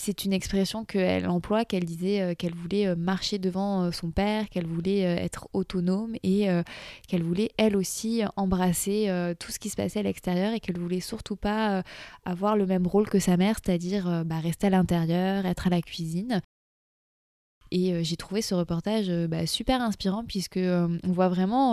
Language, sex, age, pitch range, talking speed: French, female, 20-39, 180-215 Hz, 205 wpm